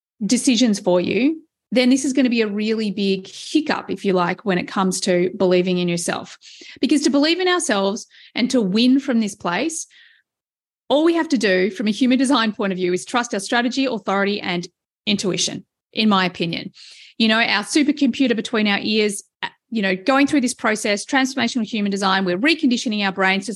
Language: English